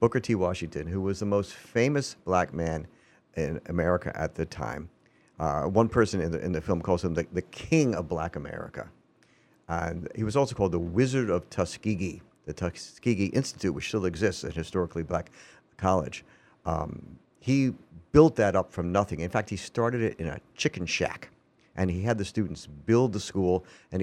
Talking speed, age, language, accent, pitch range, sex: 185 wpm, 50-69, English, American, 85-110 Hz, male